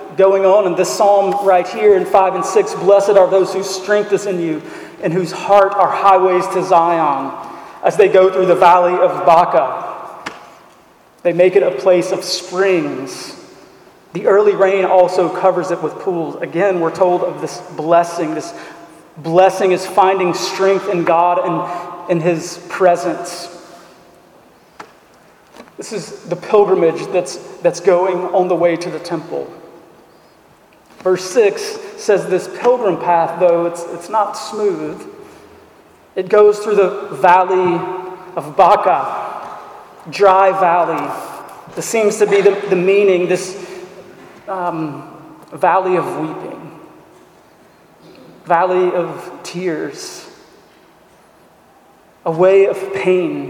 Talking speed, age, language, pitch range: 130 wpm, 40-59, English, 175-195 Hz